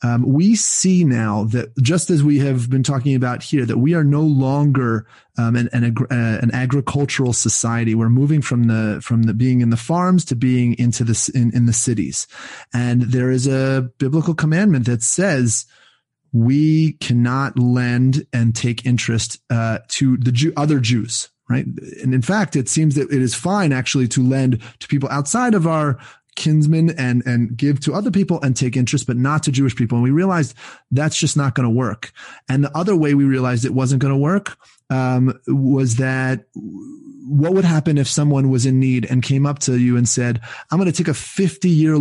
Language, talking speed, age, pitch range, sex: English, 200 wpm, 30-49, 125-155 Hz, male